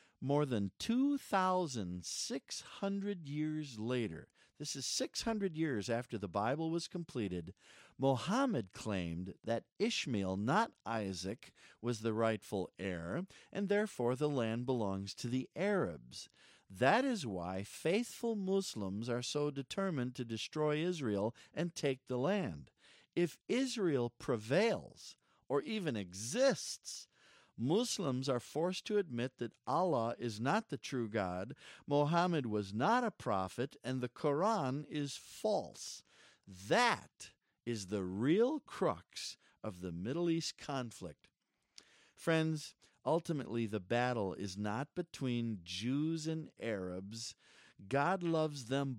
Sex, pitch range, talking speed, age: male, 110-170 Hz, 120 wpm, 50-69